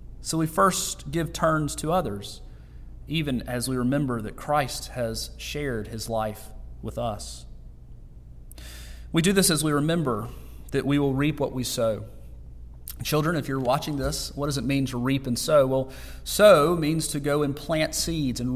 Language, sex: English, male